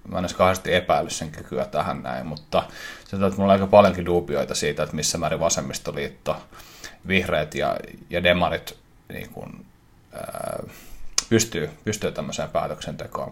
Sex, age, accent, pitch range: male, 30-49, native, 90-95 Hz